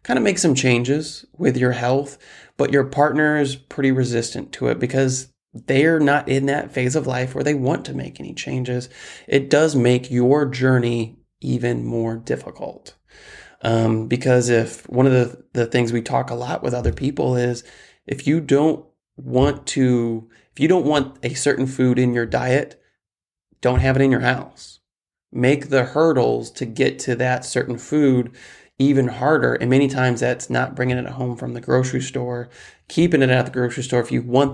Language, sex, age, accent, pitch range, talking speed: English, male, 20-39, American, 120-140 Hz, 190 wpm